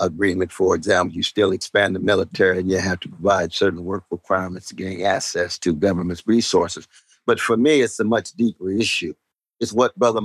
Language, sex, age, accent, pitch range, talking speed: English, male, 50-69, American, 95-120 Hz, 195 wpm